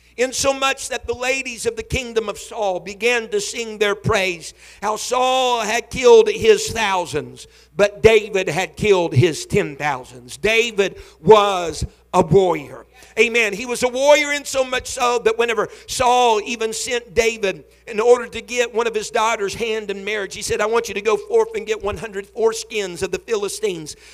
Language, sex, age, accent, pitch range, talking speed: English, male, 50-69, American, 210-270 Hz, 180 wpm